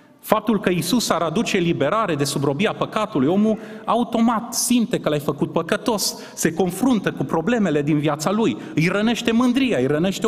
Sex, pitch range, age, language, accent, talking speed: male, 130-215 Hz, 30-49, Romanian, native, 165 wpm